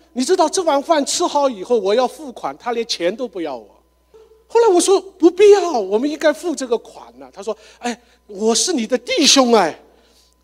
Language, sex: Chinese, male